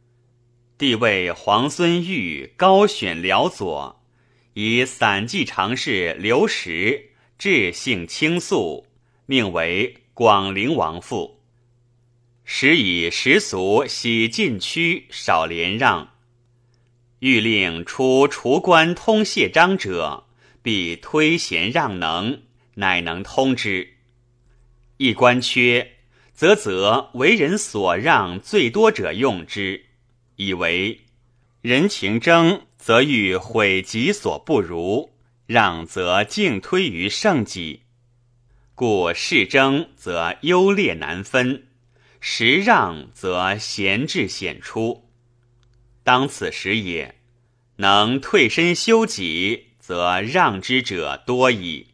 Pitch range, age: 115-130 Hz, 30-49